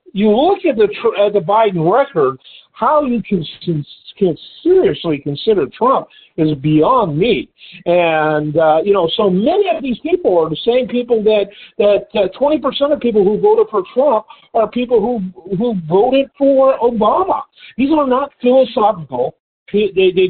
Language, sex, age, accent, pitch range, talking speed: English, male, 50-69, American, 165-240 Hz, 165 wpm